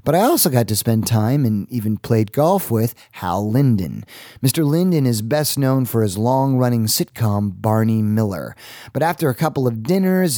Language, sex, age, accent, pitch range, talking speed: English, male, 30-49, American, 105-135 Hz, 180 wpm